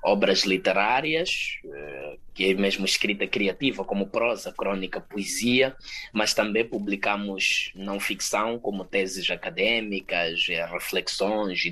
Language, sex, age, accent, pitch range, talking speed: Portuguese, male, 20-39, Brazilian, 95-120 Hz, 100 wpm